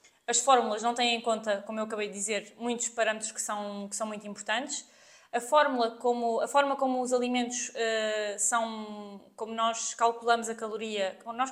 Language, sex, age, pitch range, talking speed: Portuguese, female, 20-39, 220-265 Hz, 180 wpm